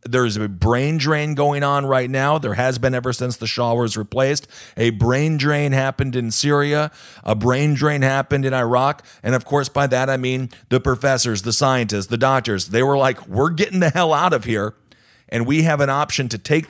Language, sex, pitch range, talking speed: English, male, 105-135 Hz, 210 wpm